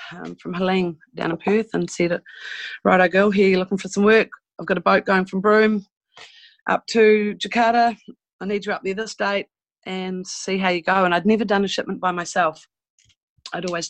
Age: 30-49